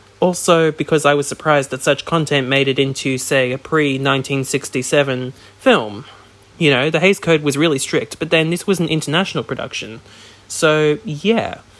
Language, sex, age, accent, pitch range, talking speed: English, male, 20-39, Australian, 135-175 Hz, 165 wpm